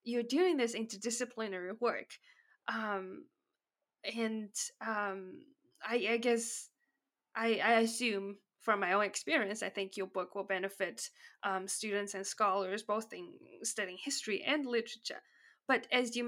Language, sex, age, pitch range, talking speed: English, female, 20-39, 210-250 Hz, 135 wpm